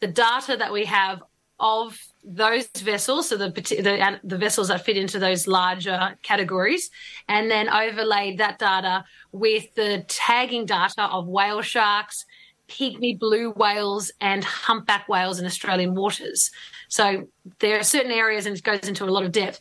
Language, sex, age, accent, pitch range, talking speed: English, female, 30-49, Australian, 195-225 Hz, 160 wpm